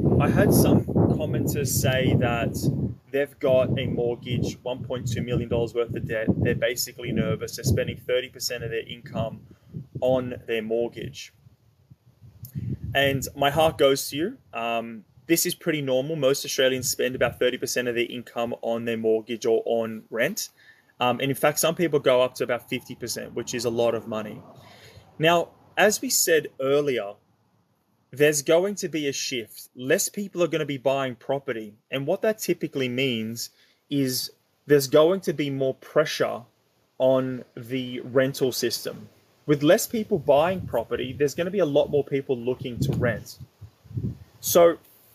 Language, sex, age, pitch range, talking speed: English, male, 20-39, 120-150 Hz, 160 wpm